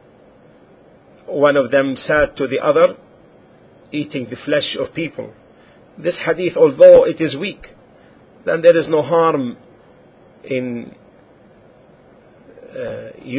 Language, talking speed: English, 110 wpm